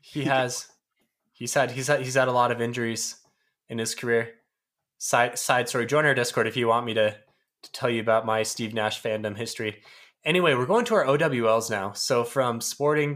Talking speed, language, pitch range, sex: 205 wpm, English, 115-145 Hz, male